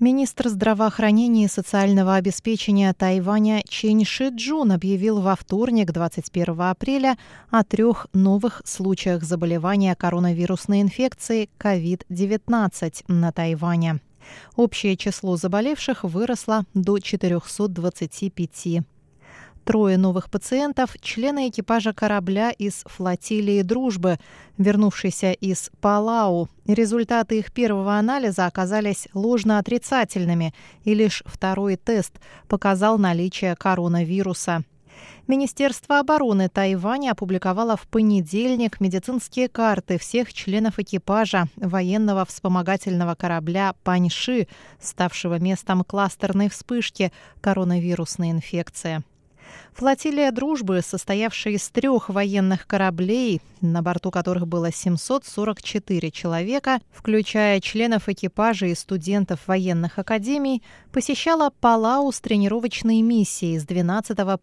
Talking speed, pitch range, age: 95 wpm, 180-225 Hz, 20-39